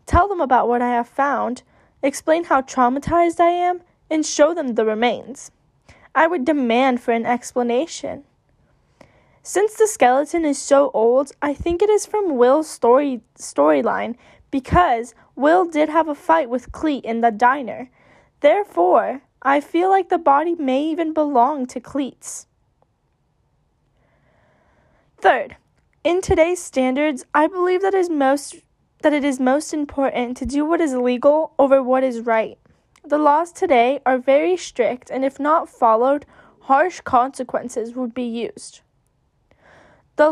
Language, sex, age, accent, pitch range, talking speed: English, female, 10-29, American, 250-315 Hz, 145 wpm